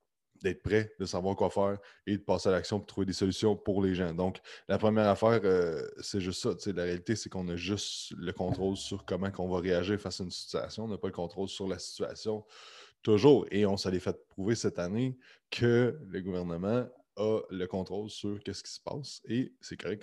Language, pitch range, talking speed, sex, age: French, 95-115 Hz, 220 wpm, male, 20-39